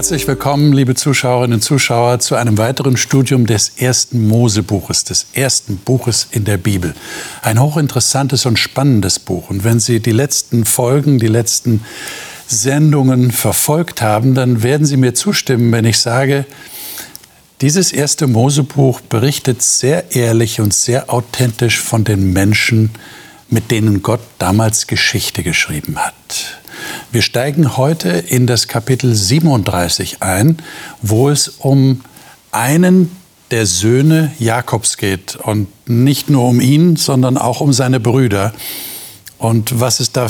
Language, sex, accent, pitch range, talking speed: German, male, German, 115-140 Hz, 135 wpm